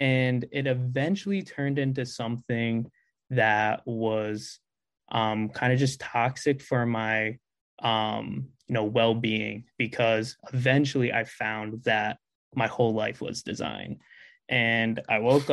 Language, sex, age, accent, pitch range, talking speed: English, male, 20-39, American, 110-125 Hz, 120 wpm